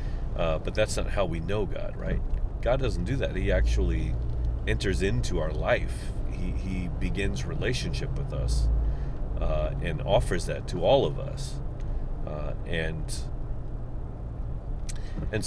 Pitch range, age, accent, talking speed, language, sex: 70-95 Hz, 40-59, American, 140 wpm, English, male